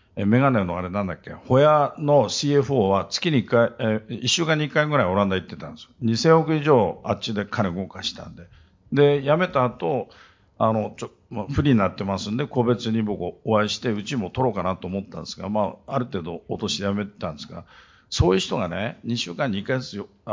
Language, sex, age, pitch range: Japanese, male, 50-69, 100-140 Hz